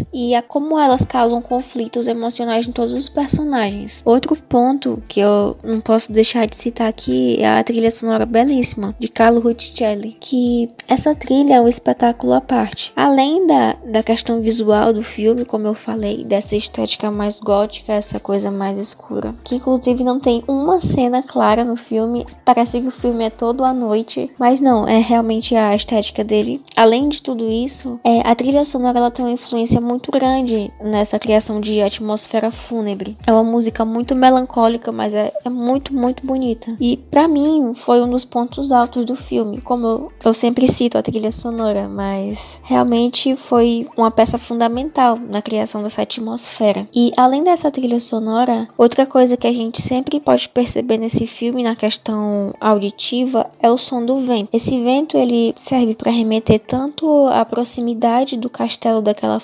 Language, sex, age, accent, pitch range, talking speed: Portuguese, female, 10-29, Brazilian, 220-250 Hz, 170 wpm